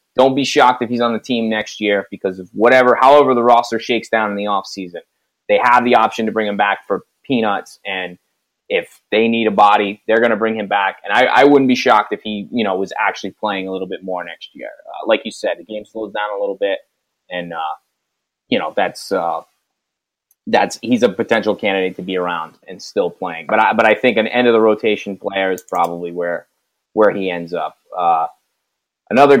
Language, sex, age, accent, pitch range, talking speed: English, male, 20-39, American, 100-130 Hz, 225 wpm